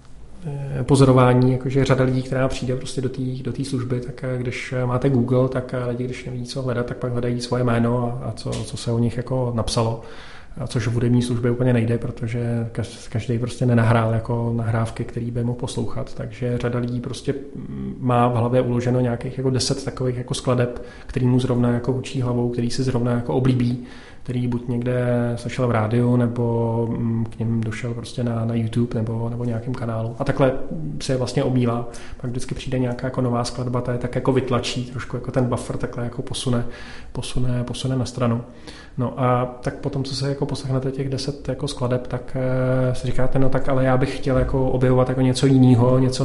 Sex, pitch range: male, 120-130 Hz